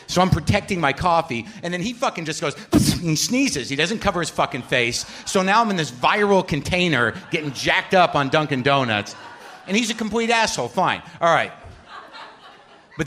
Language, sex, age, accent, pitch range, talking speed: English, male, 50-69, American, 120-185 Hz, 195 wpm